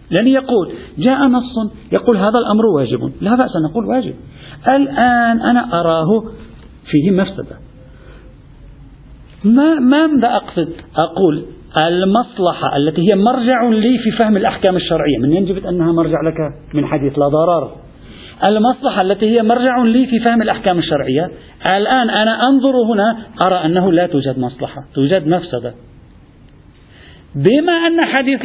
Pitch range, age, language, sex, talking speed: 165-245 Hz, 50-69, Arabic, male, 130 wpm